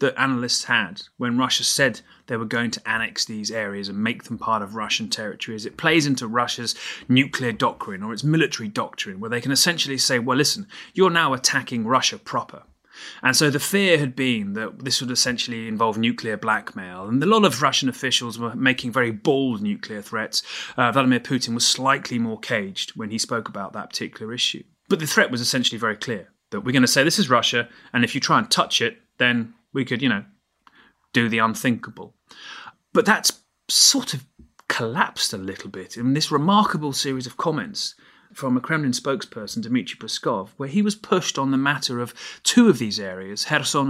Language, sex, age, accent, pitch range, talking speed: English, male, 30-49, British, 120-155 Hz, 195 wpm